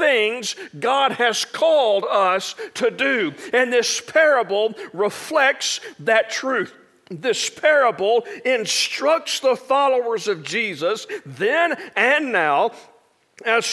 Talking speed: 105 wpm